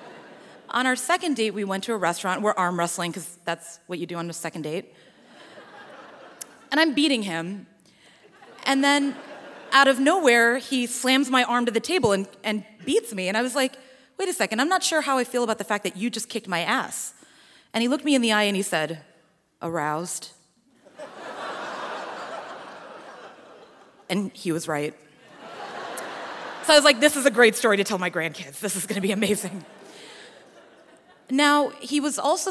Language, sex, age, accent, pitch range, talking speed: English, female, 30-49, American, 190-260 Hz, 185 wpm